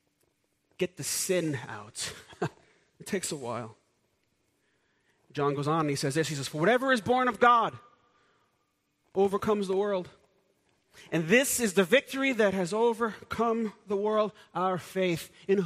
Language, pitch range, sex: English, 185-235 Hz, male